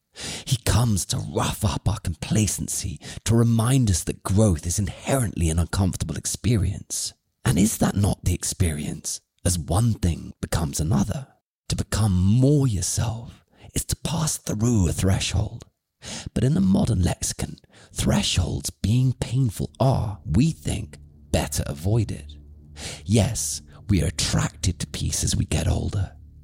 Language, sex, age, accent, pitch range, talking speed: English, male, 30-49, British, 80-110 Hz, 140 wpm